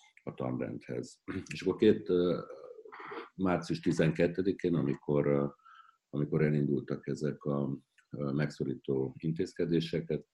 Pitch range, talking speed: 65-85 Hz, 85 wpm